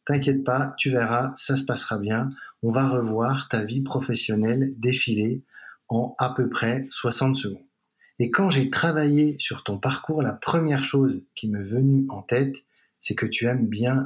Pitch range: 120-140 Hz